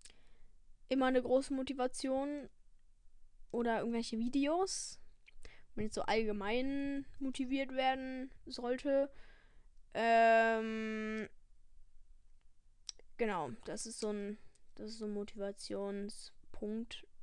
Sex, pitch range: female, 210-250 Hz